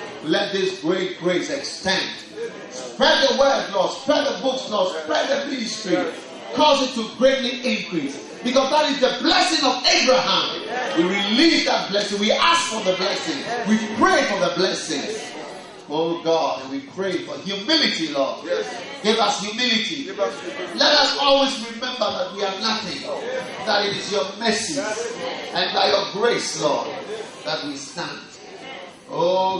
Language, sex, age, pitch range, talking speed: English, male, 30-49, 180-280 Hz, 150 wpm